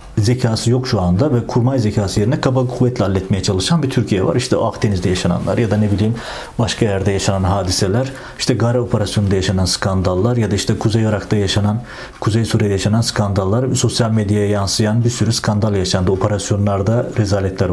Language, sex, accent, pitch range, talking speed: Turkish, male, native, 100-125 Hz, 170 wpm